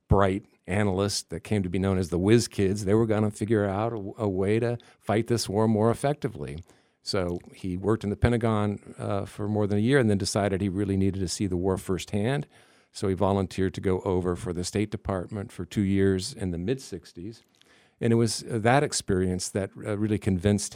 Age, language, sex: 50-69, English, male